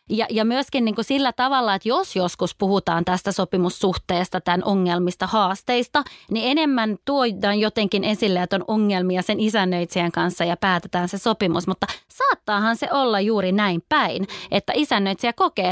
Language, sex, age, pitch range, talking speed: Finnish, female, 20-39, 185-245 Hz, 150 wpm